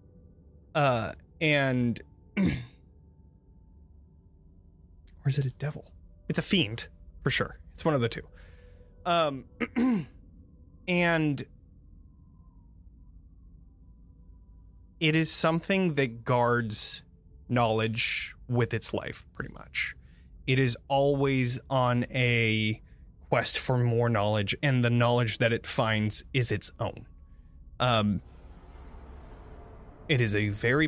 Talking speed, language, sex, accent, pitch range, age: 105 wpm, English, male, American, 80-125 Hz, 20-39